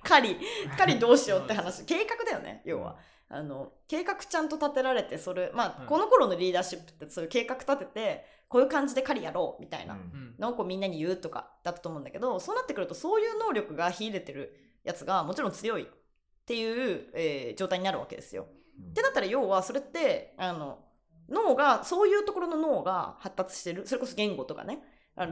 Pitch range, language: 190-315 Hz, Japanese